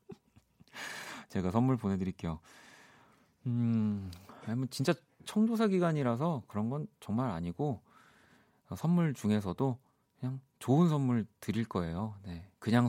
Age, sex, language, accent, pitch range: 30-49, male, Korean, native, 100-140 Hz